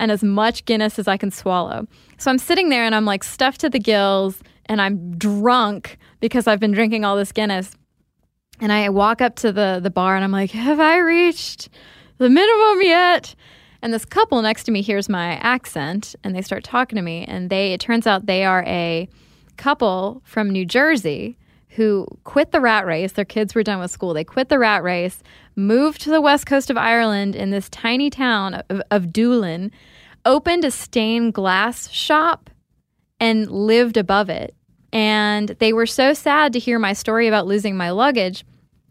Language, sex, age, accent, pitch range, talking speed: English, female, 10-29, American, 195-240 Hz, 195 wpm